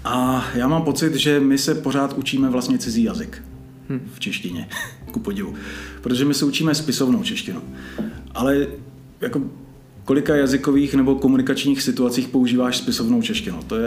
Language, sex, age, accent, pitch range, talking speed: Czech, male, 40-59, native, 125-155 Hz, 145 wpm